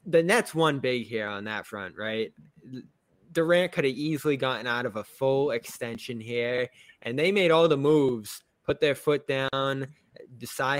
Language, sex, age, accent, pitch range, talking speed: English, male, 20-39, American, 110-155 Hz, 170 wpm